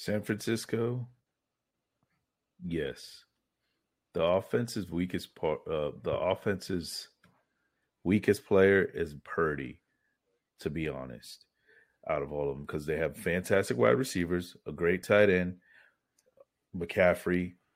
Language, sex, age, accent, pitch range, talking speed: English, male, 30-49, American, 80-105 Hz, 110 wpm